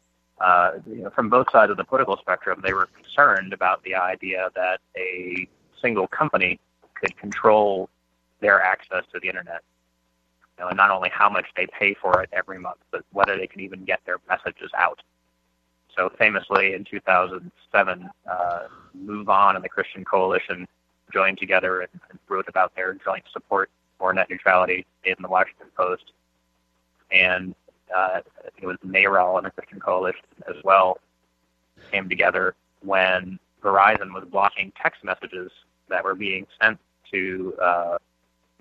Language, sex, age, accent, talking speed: English, male, 30-49, American, 150 wpm